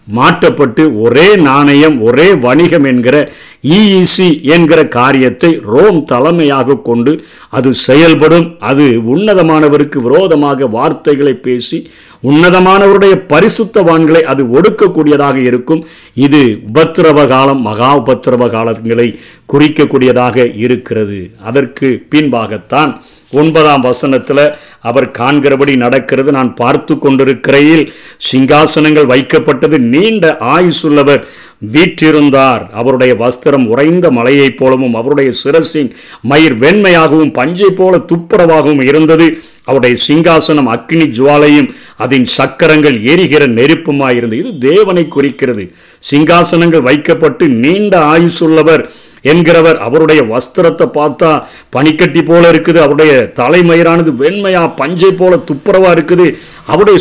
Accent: native